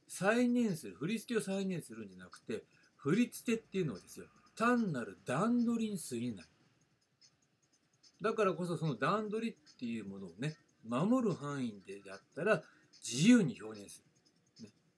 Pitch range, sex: 125-200 Hz, male